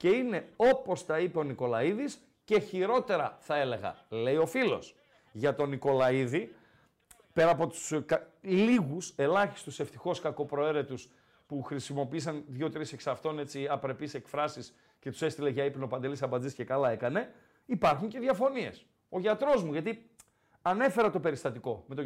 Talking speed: 145 wpm